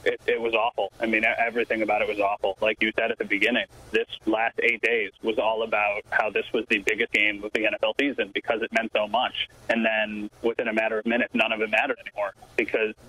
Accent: American